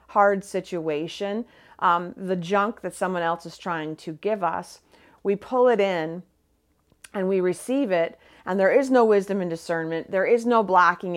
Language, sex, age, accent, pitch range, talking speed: English, female, 40-59, American, 170-220 Hz, 170 wpm